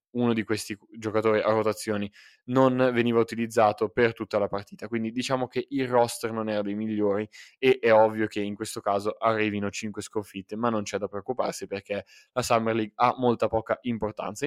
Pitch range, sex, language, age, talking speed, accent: 110-140 Hz, male, Italian, 10-29, 185 wpm, native